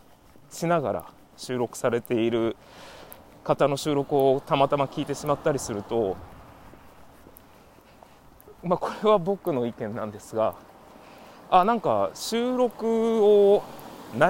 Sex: male